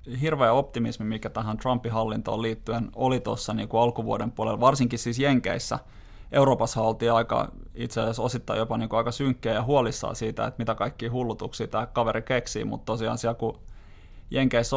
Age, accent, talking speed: 20-39, native, 165 wpm